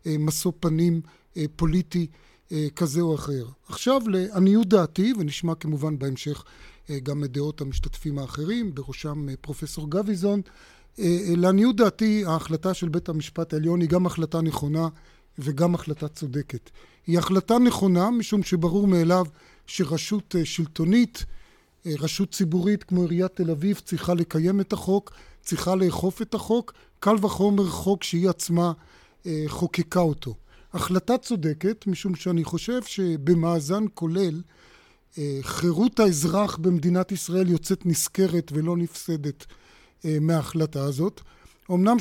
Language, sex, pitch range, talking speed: Hebrew, male, 155-195 Hz, 115 wpm